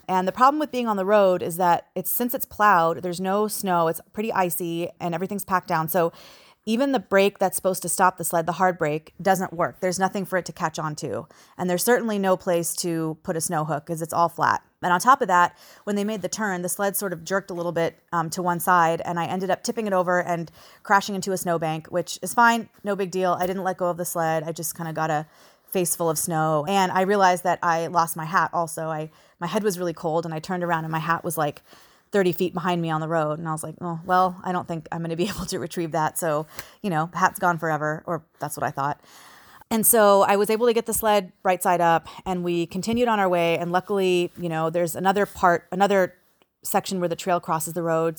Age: 30-49